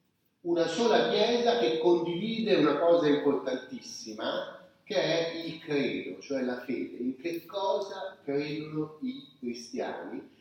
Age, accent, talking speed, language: 40-59, native, 120 wpm, Italian